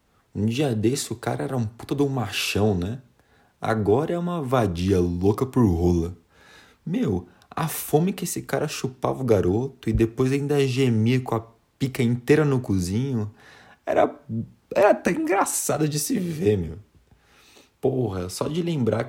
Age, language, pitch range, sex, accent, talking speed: 20-39, Portuguese, 95-130 Hz, male, Brazilian, 155 wpm